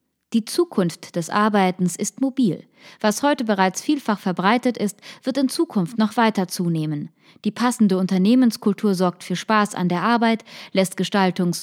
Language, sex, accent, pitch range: German, female, German, 180-235 Hz